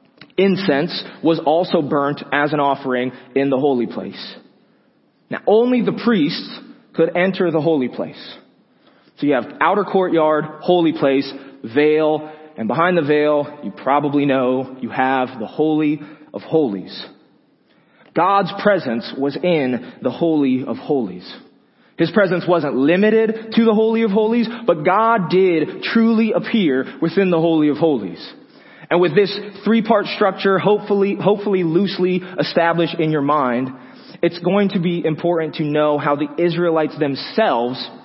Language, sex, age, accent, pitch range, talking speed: English, male, 20-39, American, 140-190 Hz, 145 wpm